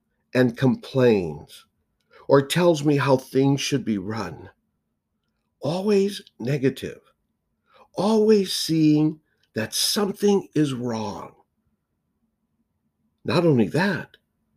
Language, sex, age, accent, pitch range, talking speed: English, male, 60-79, American, 115-155 Hz, 85 wpm